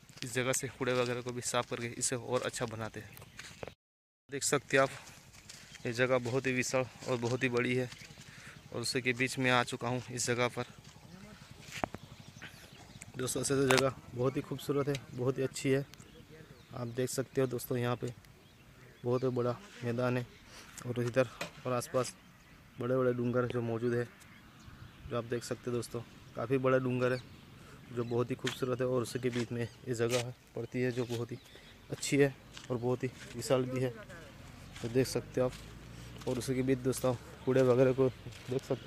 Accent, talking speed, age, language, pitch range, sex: Indian, 150 wpm, 20-39, English, 120-130 Hz, male